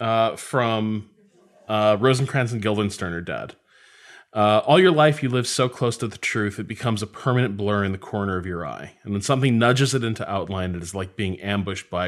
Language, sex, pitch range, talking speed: English, male, 105-130 Hz, 215 wpm